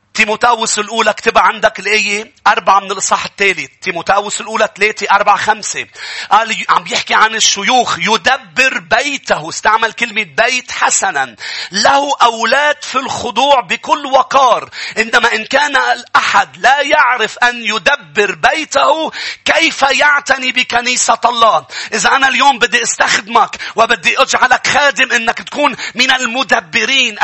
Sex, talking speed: male, 120 wpm